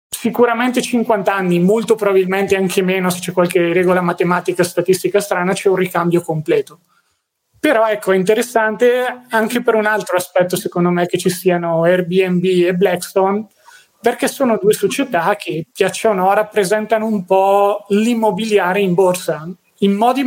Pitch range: 180-200 Hz